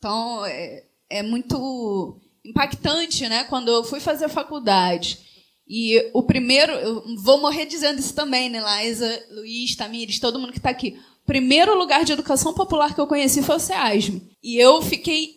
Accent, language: Brazilian, Portuguese